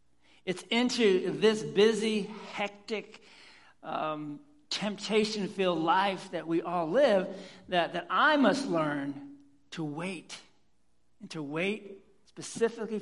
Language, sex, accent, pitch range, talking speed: English, male, American, 150-210 Hz, 105 wpm